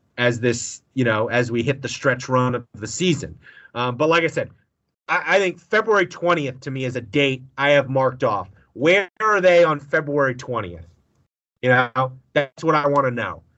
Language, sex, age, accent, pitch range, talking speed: English, male, 30-49, American, 120-160 Hz, 205 wpm